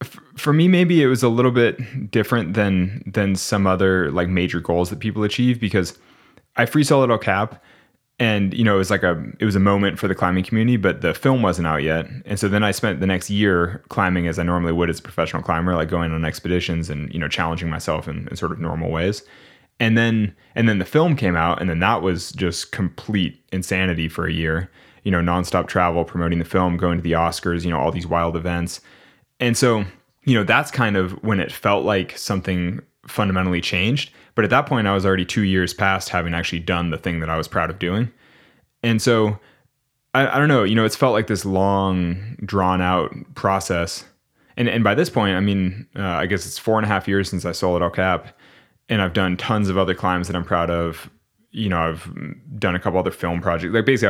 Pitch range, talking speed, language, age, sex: 90-115 Hz, 230 wpm, English, 20-39, male